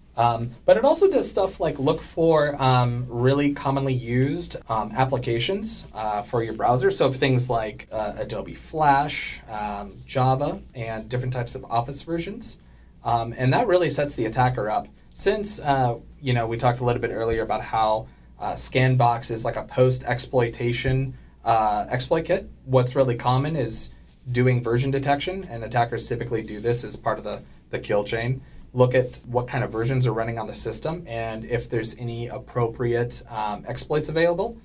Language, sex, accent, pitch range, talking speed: English, male, American, 115-135 Hz, 170 wpm